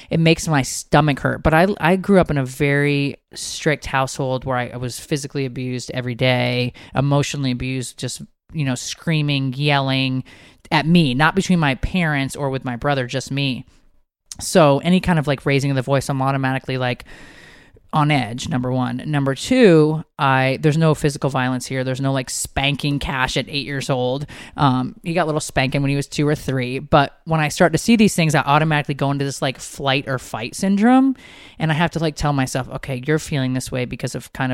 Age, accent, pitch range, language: 20-39, American, 130-150 Hz, English